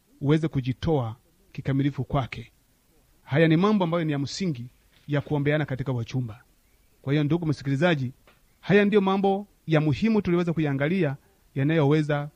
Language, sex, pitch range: Swahili, male, 135-195 Hz